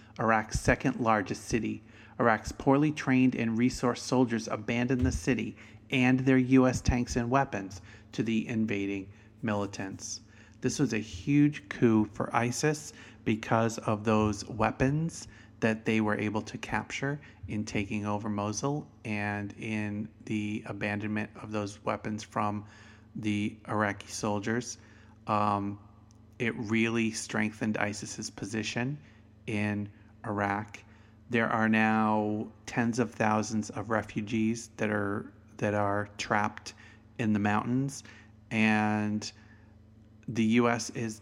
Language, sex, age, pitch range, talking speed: English, male, 30-49, 105-120 Hz, 120 wpm